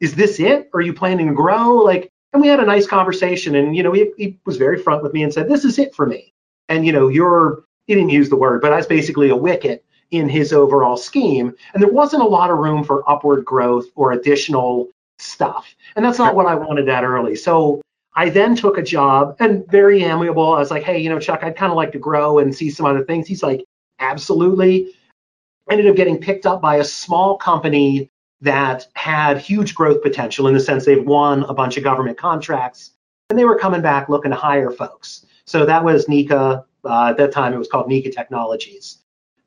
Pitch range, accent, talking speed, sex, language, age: 135-180 Hz, American, 230 wpm, male, English, 40-59